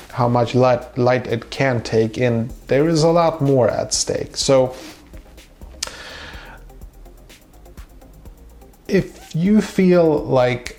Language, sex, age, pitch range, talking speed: English, male, 30-49, 110-135 Hz, 110 wpm